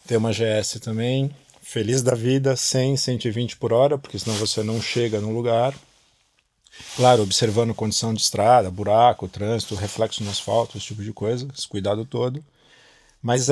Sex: male